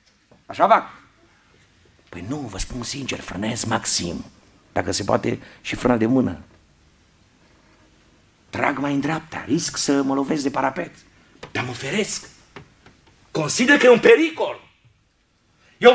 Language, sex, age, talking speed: Romanian, male, 50-69, 130 wpm